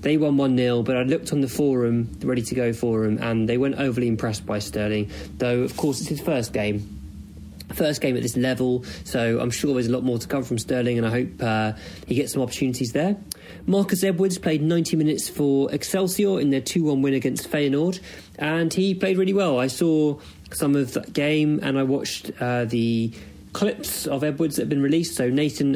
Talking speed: 205 wpm